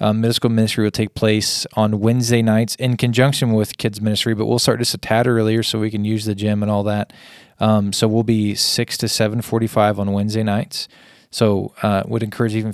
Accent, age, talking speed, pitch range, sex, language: American, 20-39, 220 wpm, 105-120 Hz, male, English